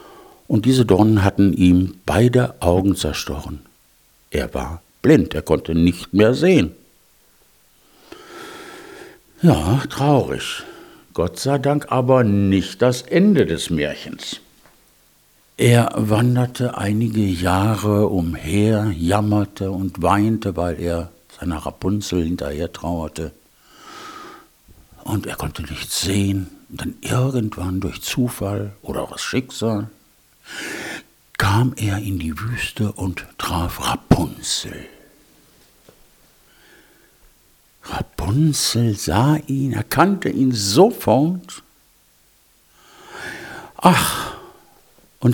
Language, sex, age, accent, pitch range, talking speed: German, male, 60-79, German, 90-130 Hz, 95 wpm